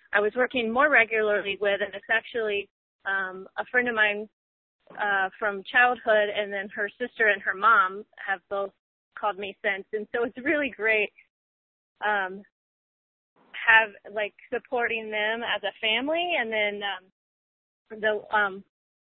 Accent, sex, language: American, female, English